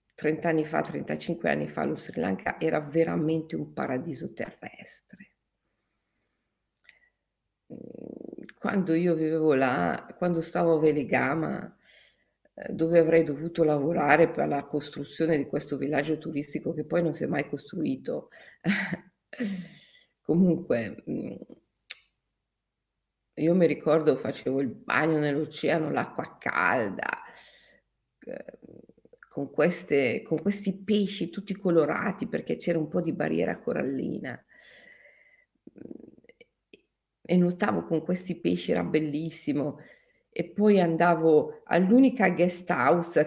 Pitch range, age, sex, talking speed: 150-195 Hz, 50-69, female, 105 wpm